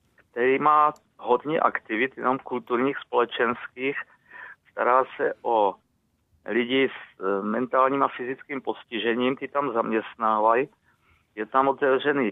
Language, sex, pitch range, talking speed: Czech, male, 120-140 Hz, 105 wpm